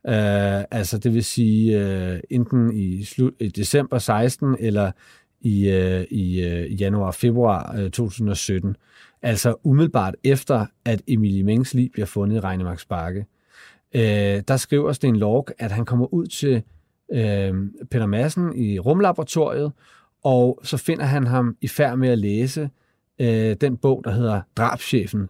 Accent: native